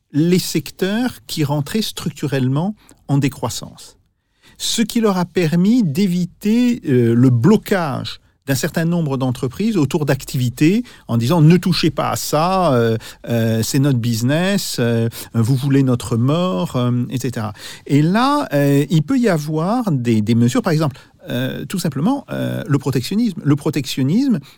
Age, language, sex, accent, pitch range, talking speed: 50-69, French, male, French, 125-185 Hz, 150 wpm